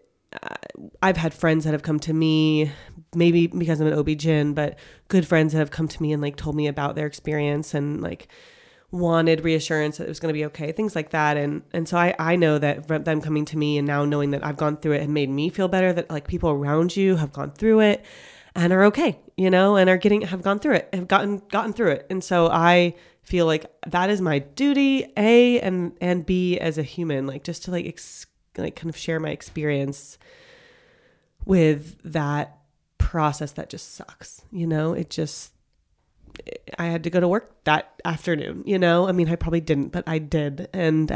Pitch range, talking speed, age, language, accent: 150-185 Hz, 220 wpm, 30-49, English, American